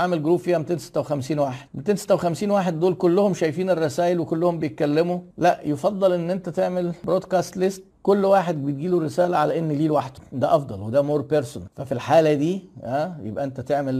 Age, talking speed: 50-69, 170 wpm